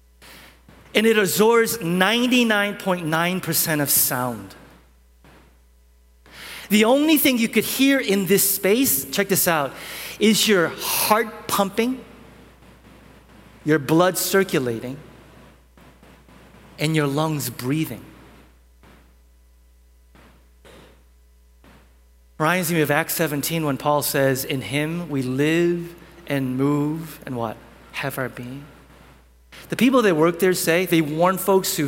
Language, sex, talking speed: English, male, 110 wpm